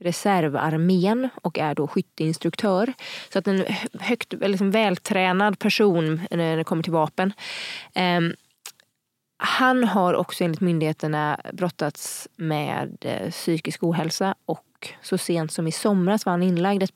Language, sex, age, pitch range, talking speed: Swedish, female, 20-39, 170-195 Hz, 125 wpm